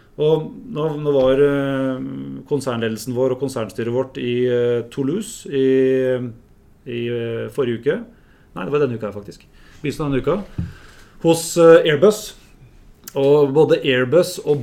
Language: English